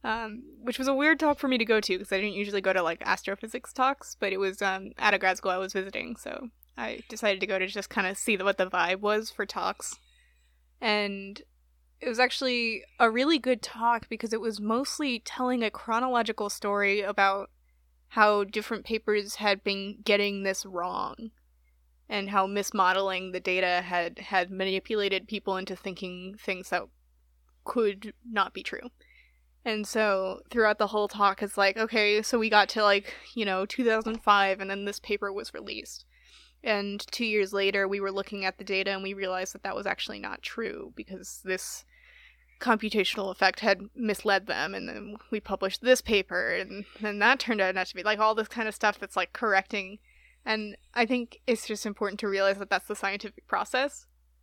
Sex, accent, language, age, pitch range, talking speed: female, American, English, 20-39, 190-225 Hz, 190 wpm